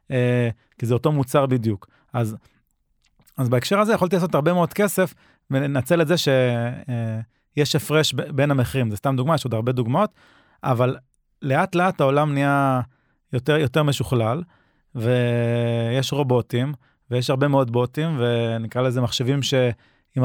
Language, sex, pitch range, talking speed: Hebrew, male, 125-160 Hz, 150 wpm